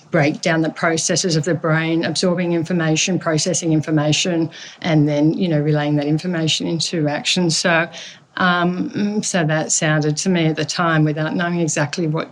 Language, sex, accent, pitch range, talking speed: English, female, Australian, 160-185 Hz, 165 wpm